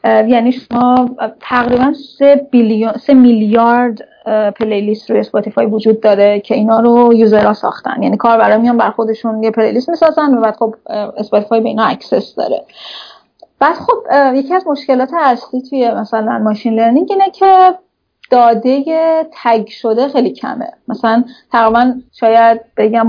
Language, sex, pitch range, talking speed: Persian, female, 220-260 Hz, 145 wpm